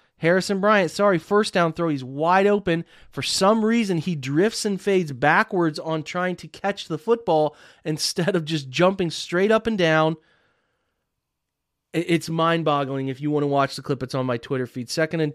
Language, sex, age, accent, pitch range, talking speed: English, male, 30-49, American, 135-165 Hz, 185 wpm